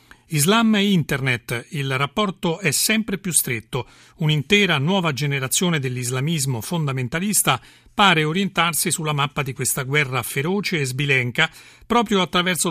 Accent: native